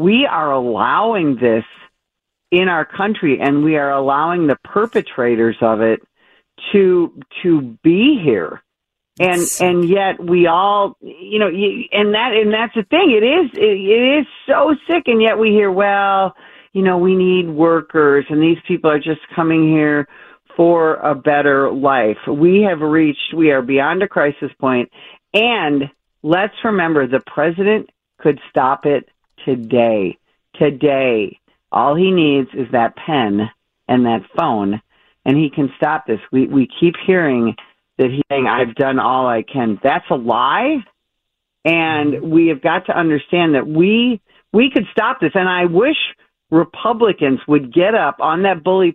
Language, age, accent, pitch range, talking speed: English, 50-69, American, 140-195 Hz, 160 wpm